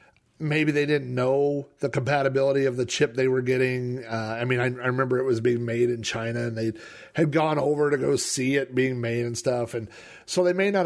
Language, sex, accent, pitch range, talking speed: English, male, American, 120-160 Hz, 230 wpm